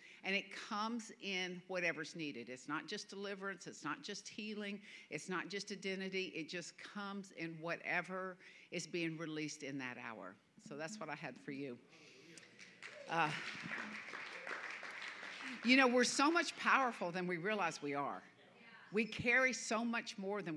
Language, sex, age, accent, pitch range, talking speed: English, female, 50-69, American, 175-215 Hz, 160 wpm